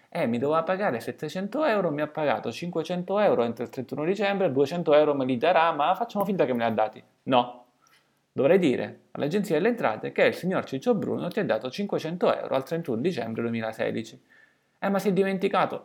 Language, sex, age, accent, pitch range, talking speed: Italian, male, 30-49, native, 125-190 Hz, 205 wpm